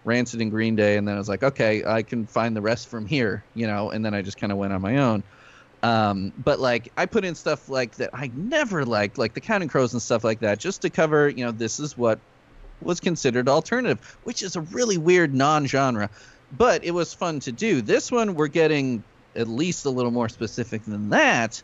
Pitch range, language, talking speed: 115-155 Hz, English, 235 wpm